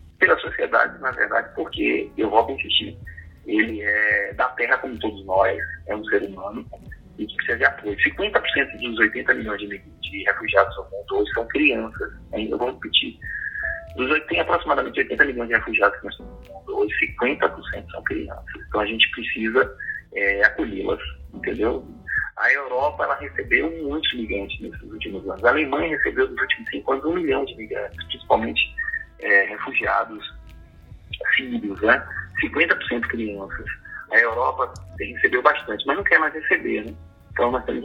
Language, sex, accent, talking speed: Portuguese, male, Brazilian, 160 wpm